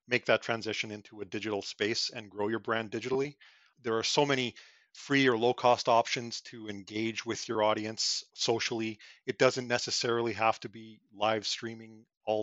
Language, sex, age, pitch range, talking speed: English, male, 40-59, 105-120 Hz, 170 wpm